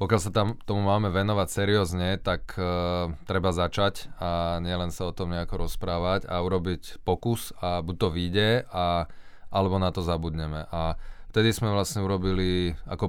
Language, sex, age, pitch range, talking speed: Slovak, male, 20-39, 85-100 Hz, 160 wpm